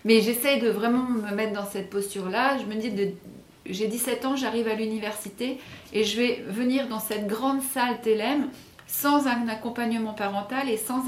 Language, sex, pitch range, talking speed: French, female, 200-235 Hz, 185 wpm